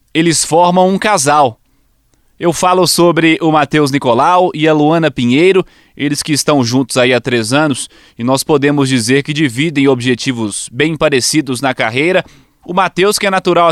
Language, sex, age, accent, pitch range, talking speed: Portuguese, male, 20-39, Brazilian, 140-185 Hz, 165 wpm